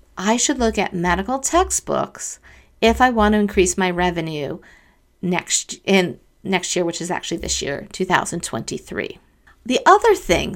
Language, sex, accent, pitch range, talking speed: English, female, American, 175-235 Hz, 150 wpm